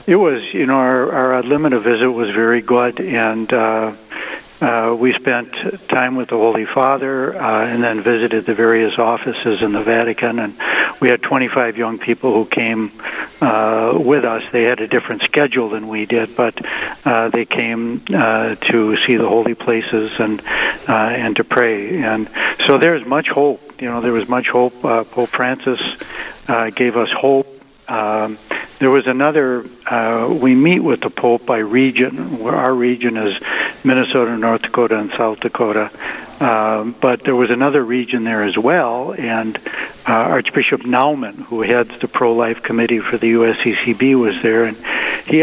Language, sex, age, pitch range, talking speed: English, male, 70-89, 115-130 Hz, 175 wpm